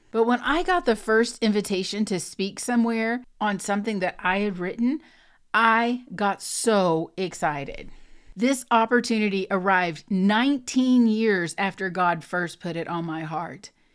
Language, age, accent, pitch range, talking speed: English, 40-59, American, 195-250 Hz, 140 wpm